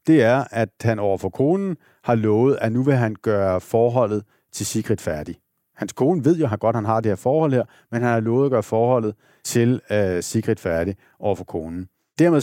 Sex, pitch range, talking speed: male, 105-135 Hz, 205 wpm